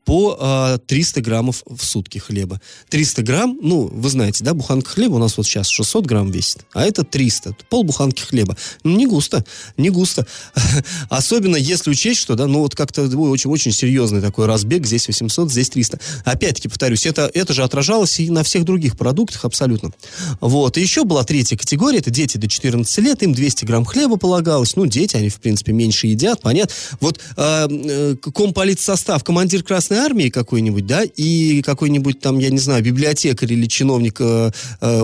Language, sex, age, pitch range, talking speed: Russian, male, 20-39, 115-160 Hz, 175 wpm